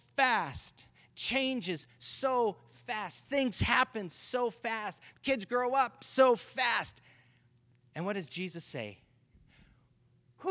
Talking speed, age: 110 wpm, 40-59